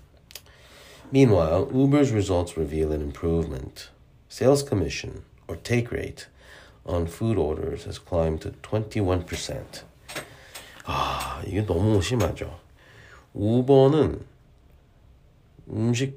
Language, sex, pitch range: Korean, male, 80-115 Hz